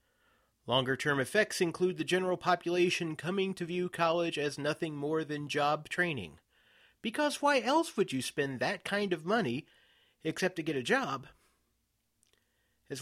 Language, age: English, 30-49